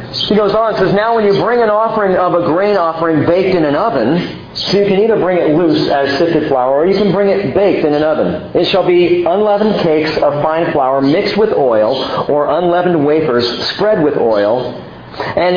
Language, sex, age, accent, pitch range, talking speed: English, male, 40-59, American, 140-195 Hz, 215 wpm